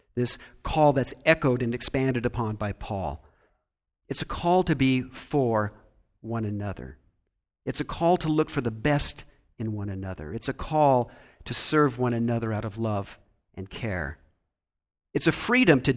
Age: 50-69